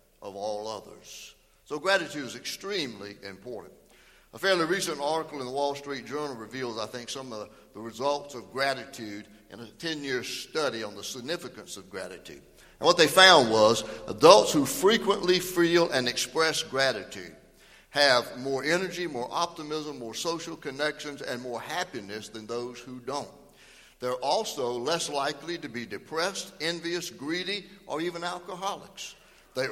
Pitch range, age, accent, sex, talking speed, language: 125-175 Hz, 60-79, American, male, 155 wpm, English